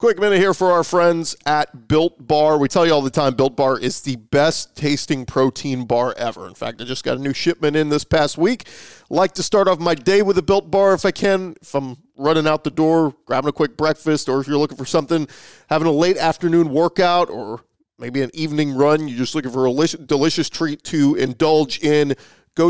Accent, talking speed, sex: American, 225 wpm, male